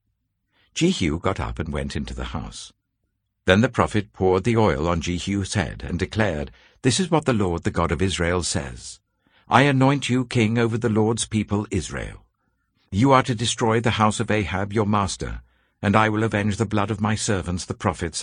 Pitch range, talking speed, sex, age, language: 95-120 Hz, 195 wpm, male, 60-79, English